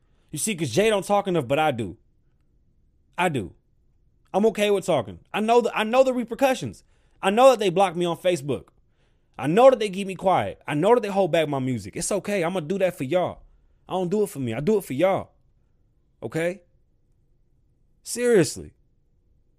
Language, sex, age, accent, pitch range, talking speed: English, male, 20-39, American, 130-185 Hz, 200 wpm